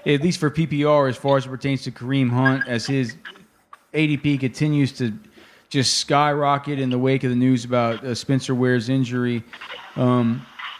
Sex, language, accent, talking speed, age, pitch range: male, English, American, 170 wpm, 30-49, 125-150 Hz